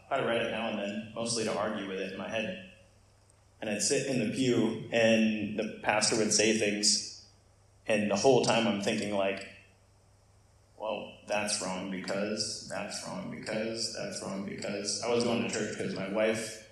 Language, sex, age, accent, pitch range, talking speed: English, male, 20-39, American, 100-110 Hz, 185 wpm